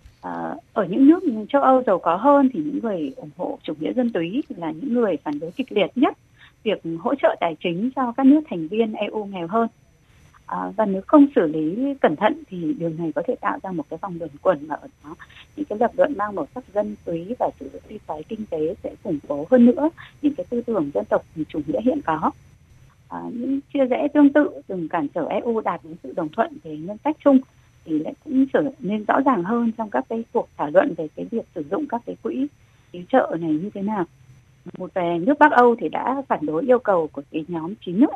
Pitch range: 170-275 Hz